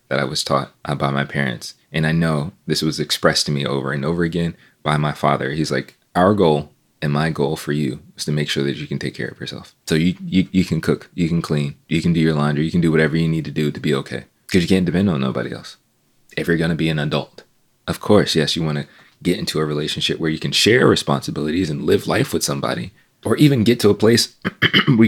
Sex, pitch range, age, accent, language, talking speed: male, 75-95 Hz, 20-39, American, English, 255 wpm